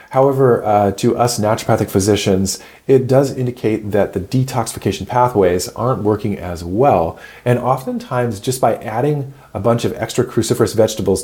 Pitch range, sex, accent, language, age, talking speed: 95-120 Hz, male, American, English, 40-59, 150 wpm